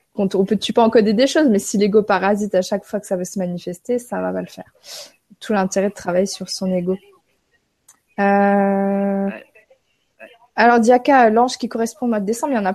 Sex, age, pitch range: female, 20-39, 190-230 Hz